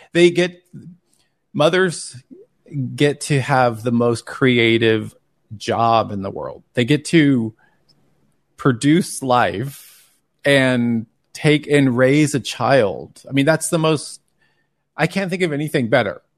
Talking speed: 130 wpm